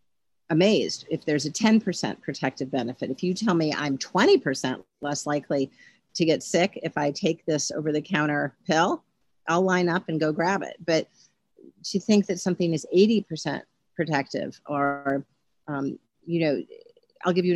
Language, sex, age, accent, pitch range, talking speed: English, female, 50-69, American, 145-185 Hz, 165 wpm